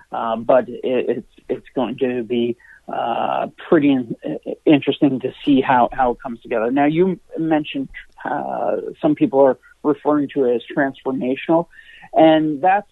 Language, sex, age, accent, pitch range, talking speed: English, male, 40-59, American, 130-160 Hz, 155 wpm